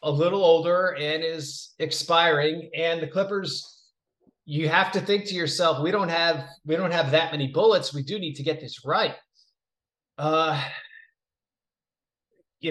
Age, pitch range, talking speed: 30-49, 140-175 Hz, 155 wpm